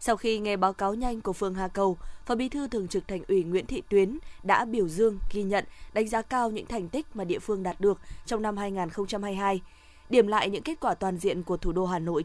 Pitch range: 190-230 Hz